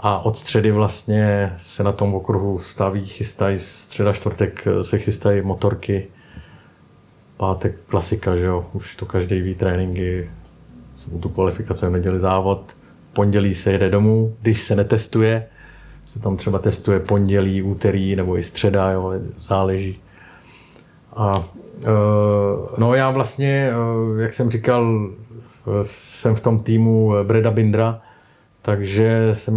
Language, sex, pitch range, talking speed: Czech, male, 95-110 Hz, 125 wpm